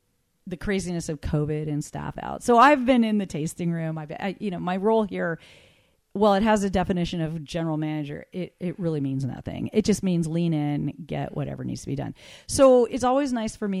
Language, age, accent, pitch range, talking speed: English, 40-59, American, 150-190 Hz, 220 wpm